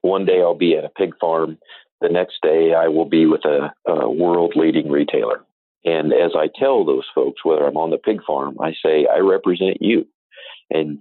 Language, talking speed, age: English, 200 wpm, 40-59